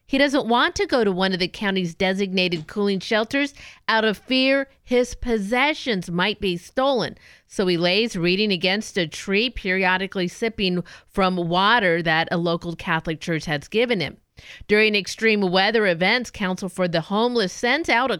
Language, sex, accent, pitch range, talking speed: English, female, American, 180-235 Hz, 170 wpm